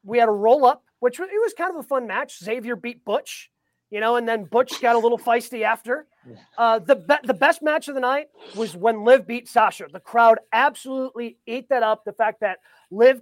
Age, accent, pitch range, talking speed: 30-49, American, 215-270 Hz, 225 wpm